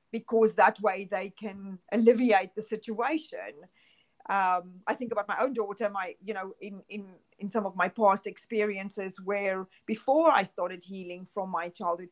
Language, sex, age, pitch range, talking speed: English, female, 40-59, 185-220 Hz, 170 wpm